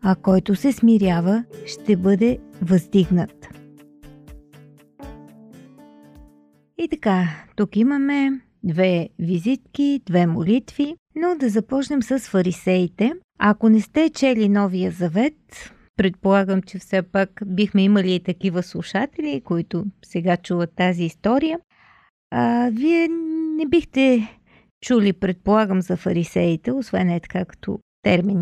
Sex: female